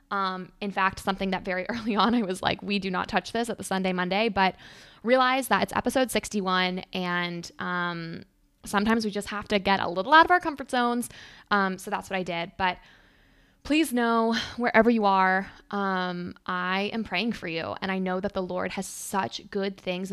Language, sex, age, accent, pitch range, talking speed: English, female, 20-39, American, 185-210 Hz, 205 wpm